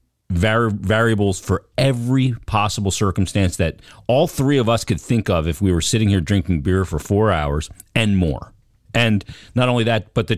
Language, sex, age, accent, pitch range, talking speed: English, male, 40-59, American, 95-115 Hz, 180 wpm